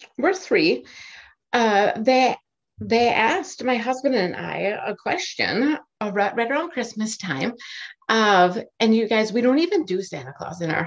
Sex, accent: female, American